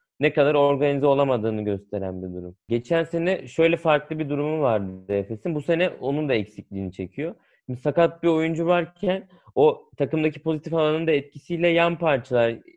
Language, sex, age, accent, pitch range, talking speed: Turkish, male, 30-49, native, 110-145 Hz, 160 wpm